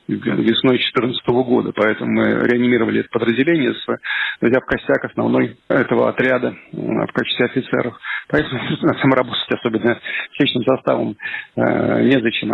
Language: Russian